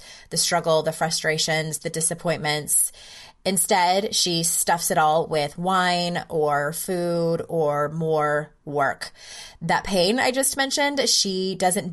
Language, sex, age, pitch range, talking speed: English, female, 20-39, 165-210 Hz, 125 wpm